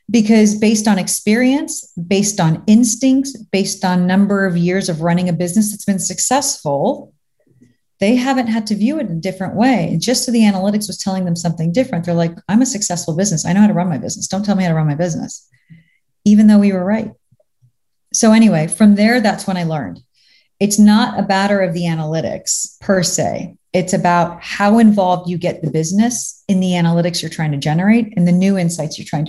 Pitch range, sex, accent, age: 160-200 Hz, female, American, 30-49